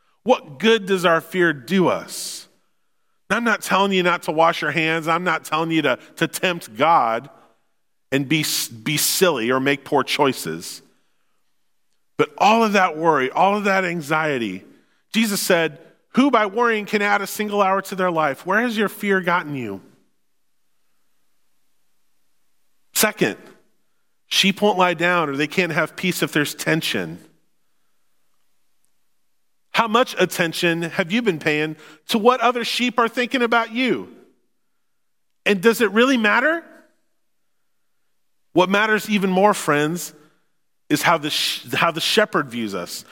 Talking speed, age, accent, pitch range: 150 wpm, 40-59, American, 155-215 Hz